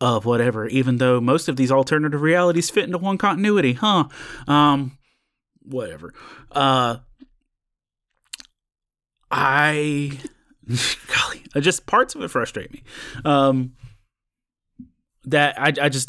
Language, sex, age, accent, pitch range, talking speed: English, male, 30-49, American, 125-145 Hz, 115 wpm